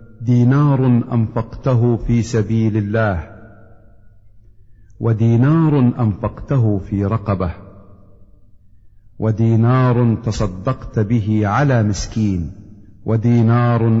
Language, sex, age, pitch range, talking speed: Arabic, male, 50-69, 105-125 Hz, 65 wpm